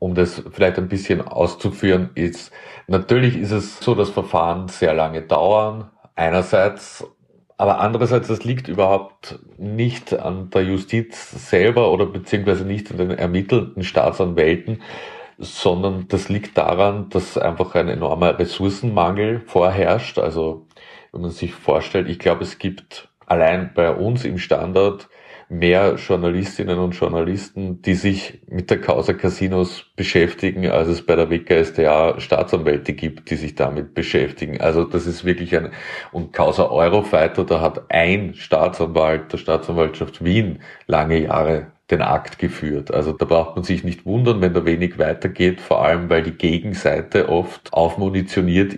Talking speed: 145 wpm